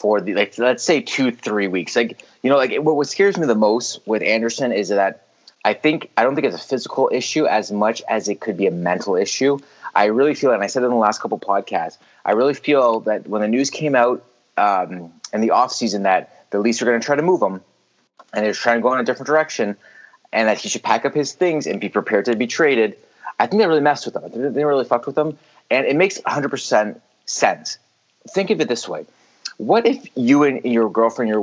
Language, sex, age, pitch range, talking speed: English, male, 30-49, 110-145 Hz, 245 wpm